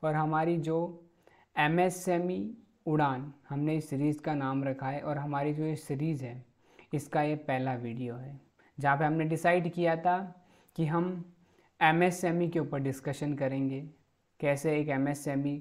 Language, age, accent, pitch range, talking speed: Hindi, 20-39, native, 145-175 Hz, 155 wpm